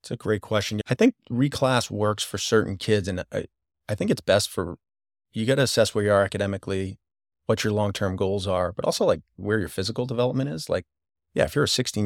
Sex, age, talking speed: male, 30-49, 230 wpm